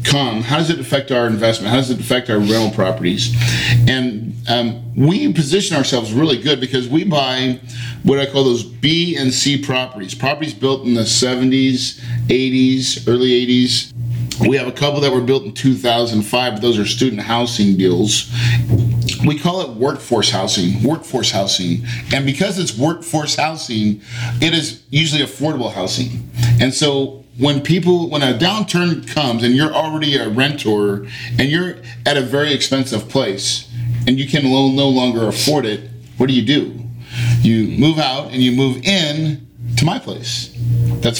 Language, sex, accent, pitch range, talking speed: English, male, American, 120-140 Hz, 165 wpm